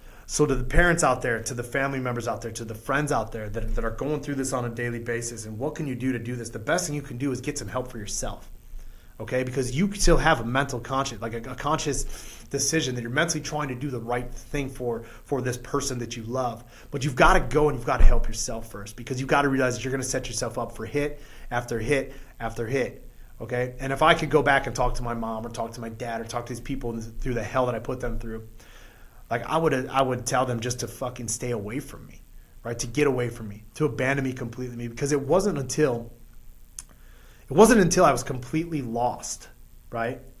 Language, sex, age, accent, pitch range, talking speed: English, male, 30-49, American, 120-140 Hz, 255 wpm